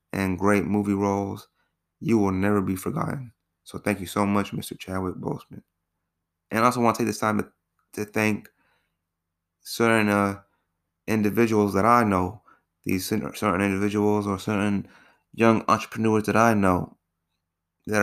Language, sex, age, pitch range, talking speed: English, male, 20-39, 95-105 Hz, 150 wpm